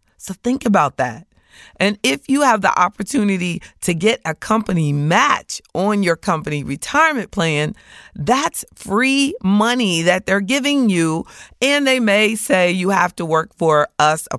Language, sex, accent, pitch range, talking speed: English, female, American, 155-210 Hz, 160 wpm